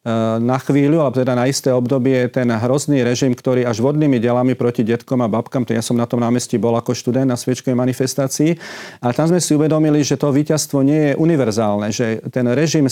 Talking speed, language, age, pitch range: 205 wpm, Slovak, 40-59, 120-145 Hz